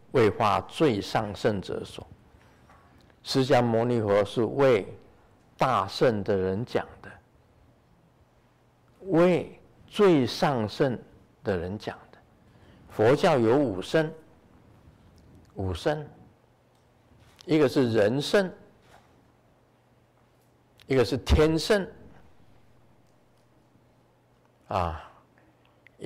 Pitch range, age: 115-140 Hz, 50-69